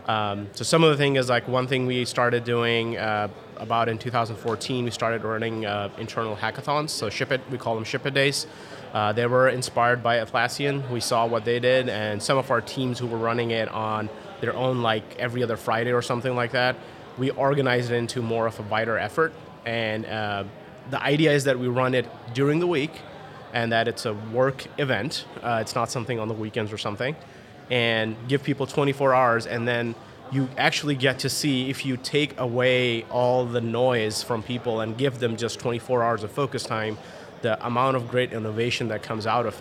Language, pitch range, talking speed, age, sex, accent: English, 115-135 Hz, 210 wpm, 30-49, male, American